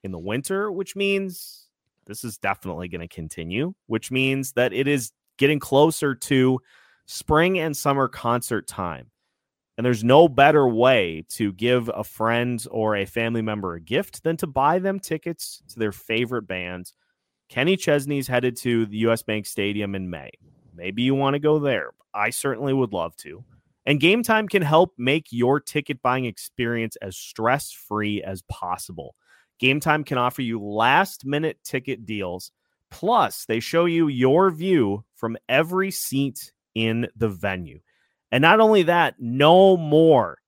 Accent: American